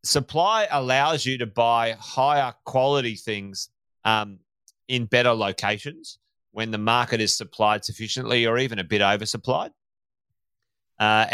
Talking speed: 125 wpm